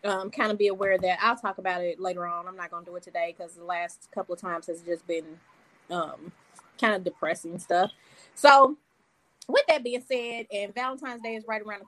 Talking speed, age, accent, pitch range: 215 wpm, 20-39, American, 195-240 Hz